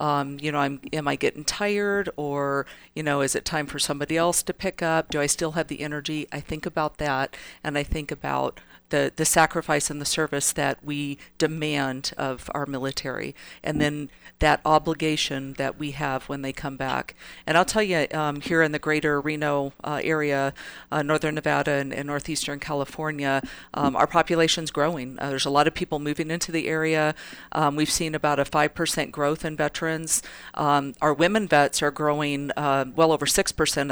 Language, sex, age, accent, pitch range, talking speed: English, female, 50-69, American, 140-165 Hz, 190 wpm